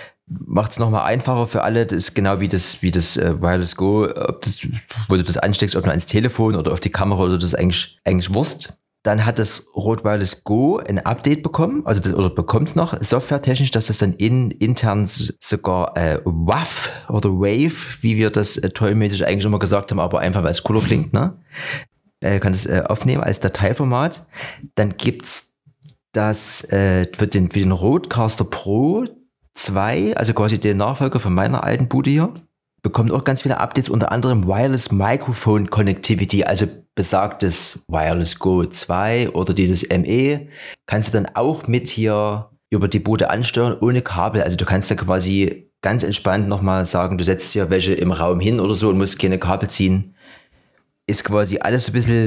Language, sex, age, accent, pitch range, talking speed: German, male, 30-49, German, 95-125 Hz, 190 wpm